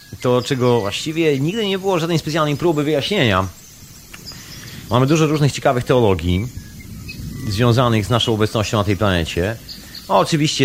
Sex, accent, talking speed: male, native, 130 wpm